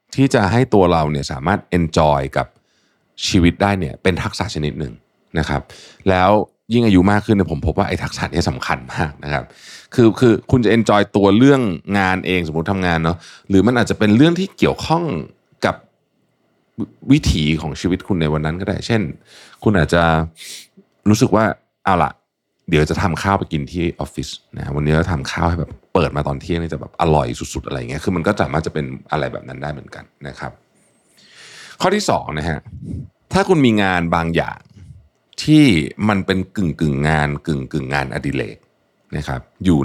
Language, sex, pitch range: Thai, male, 75-105 Hz